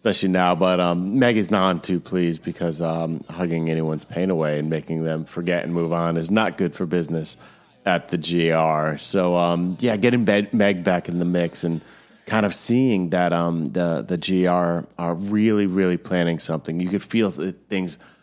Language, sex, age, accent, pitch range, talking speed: English, male, 30-49, American, 85-100 Hz, 190 wpm